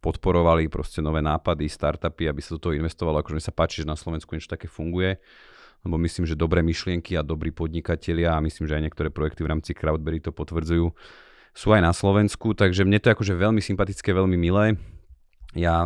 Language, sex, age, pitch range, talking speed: Slovak, male, 30-49, 80-95 Hz, 200 wpm